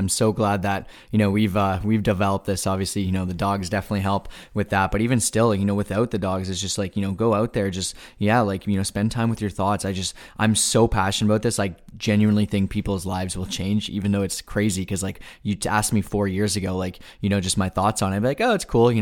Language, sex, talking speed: English, male, 275 wpm